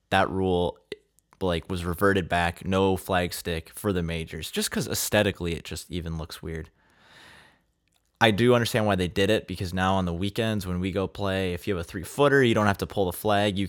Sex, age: male, 20-39